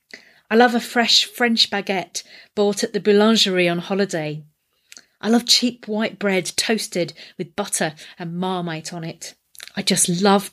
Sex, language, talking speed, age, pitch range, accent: female, English, 155 wpm, 40-59, 180-240 Hz, British